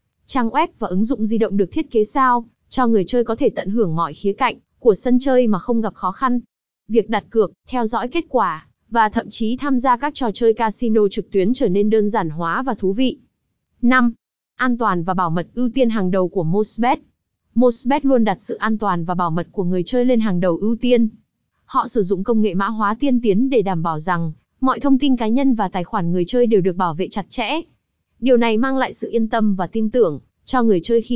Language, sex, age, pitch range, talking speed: Vietnamese, female, 20-39, 200-250 Hz, 245 wpm